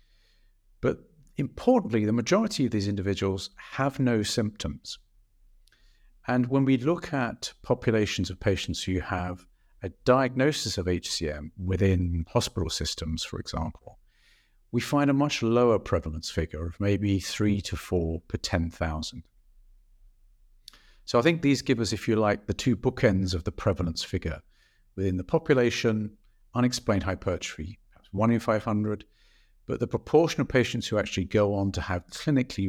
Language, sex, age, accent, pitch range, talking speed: English, male, 50-69, British, 90-120 Hz, 145 wpm